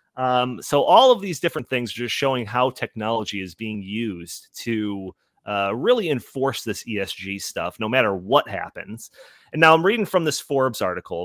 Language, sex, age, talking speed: English, male, 30-49, 180 wpm